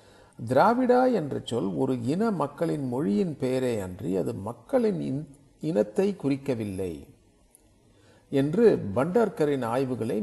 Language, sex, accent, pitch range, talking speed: Tamil, male, native, 120-165 Hz, 95 wpm